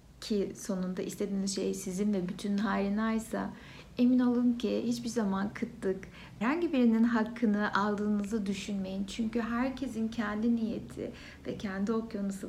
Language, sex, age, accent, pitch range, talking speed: Turkish, female, 60-79, native, 195-235 Hz, 130 wpm